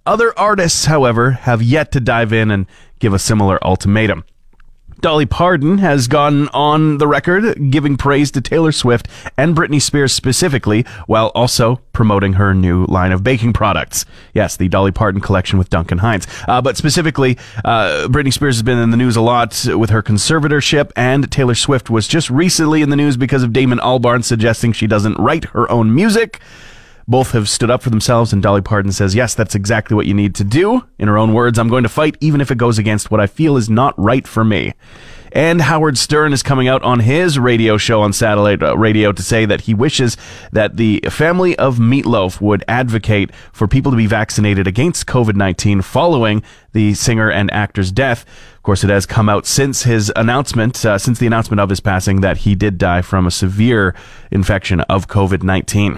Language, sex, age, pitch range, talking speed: English, male, 30-49, 105-135 Hz, 200 wpm